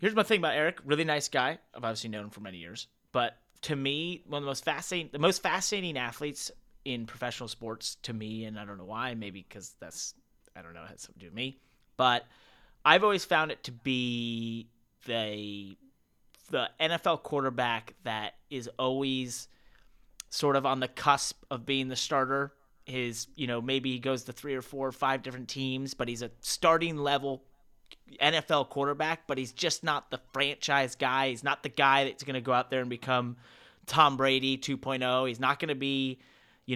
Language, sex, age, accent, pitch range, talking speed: English, male, 30-49, American, 120-145 Hz, 200 wpm